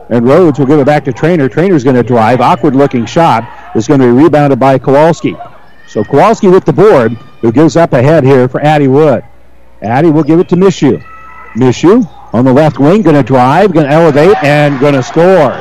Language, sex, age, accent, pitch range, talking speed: English, male, 50-69, American, 140-180 Hz, 215 wpm